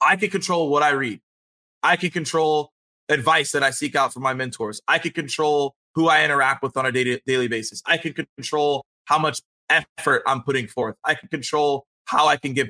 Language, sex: English, male